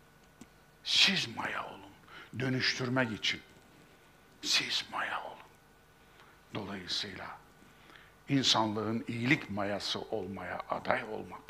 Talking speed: 80 wpm